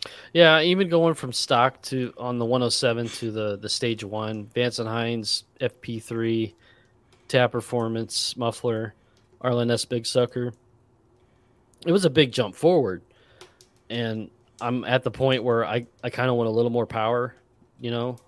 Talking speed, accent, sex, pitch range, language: 155 wpm, American, male, 115-125 Hz, English